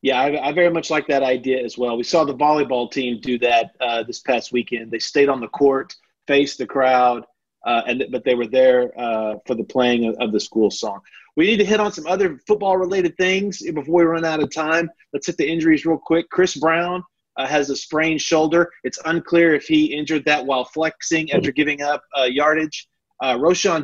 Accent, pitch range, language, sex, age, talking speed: American, 125-160 Hz, English, male, 30-49, 220 wpm